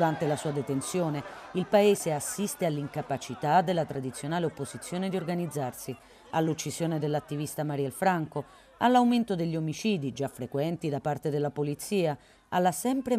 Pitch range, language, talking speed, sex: 140-185 Hz, Italian, 125 wpm, female